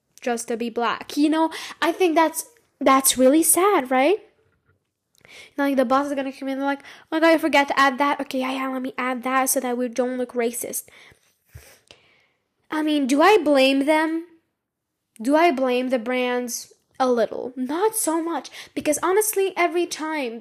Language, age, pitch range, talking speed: English, 10-29, 250-320 Hz, 180 wpm